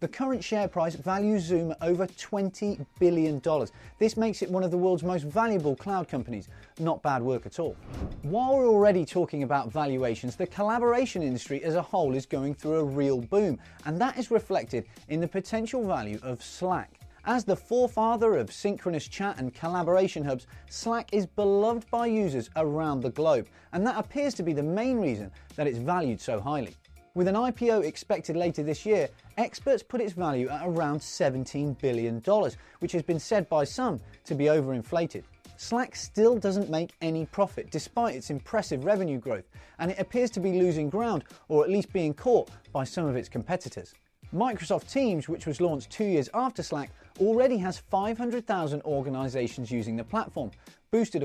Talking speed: 180 wpm